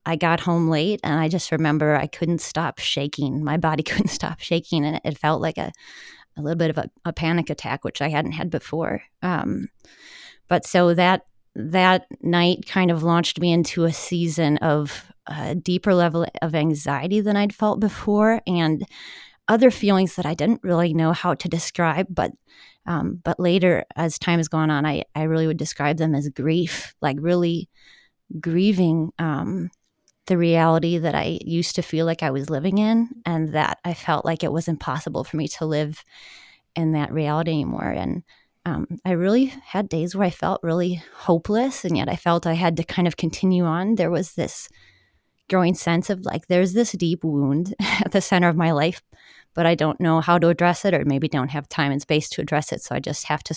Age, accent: 30-49, American